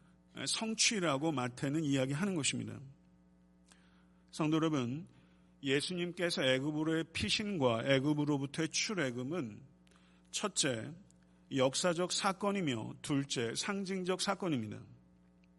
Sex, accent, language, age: male, native, Korean, 50-69